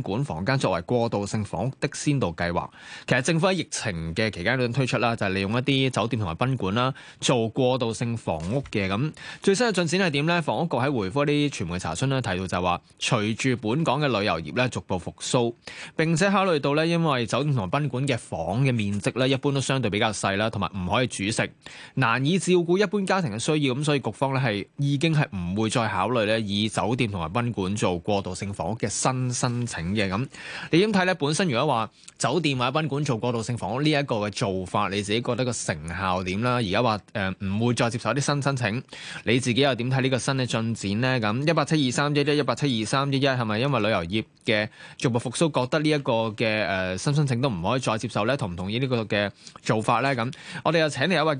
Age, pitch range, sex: 20-39, 105-145 Hz, male